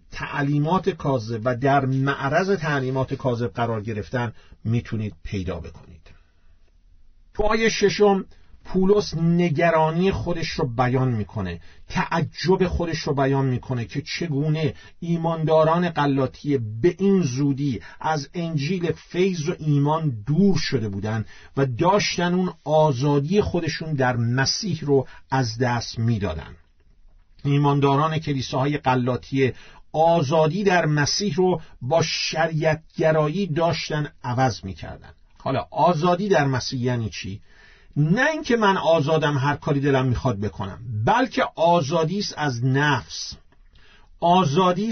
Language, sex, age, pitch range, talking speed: Persian, male, 50-69, 125-170 Hz, 115 wpm